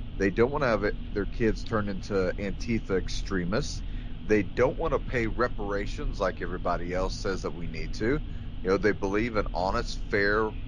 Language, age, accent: English, 30-49, American